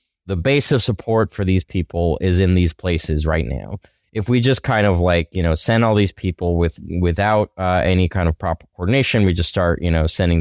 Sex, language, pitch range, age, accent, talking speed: male, English, 85-100 Hz, 20-39, American, 225 wpm